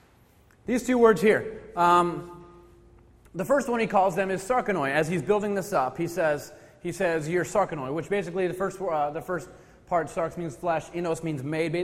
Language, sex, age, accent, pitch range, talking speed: English, male, 30-49, American, 150-195 Hz, 195 wpm